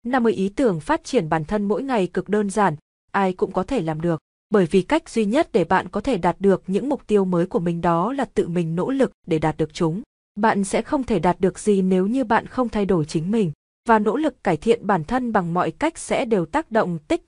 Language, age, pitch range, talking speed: Vietnamese, 20-39, 185-230 Hz, 260 wpm